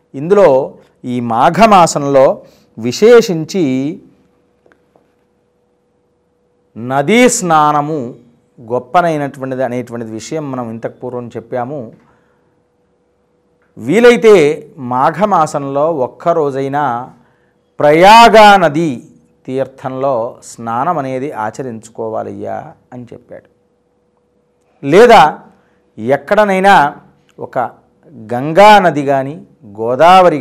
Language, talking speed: Telugu, 60 wpm